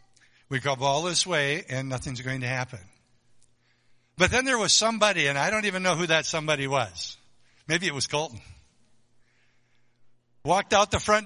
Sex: male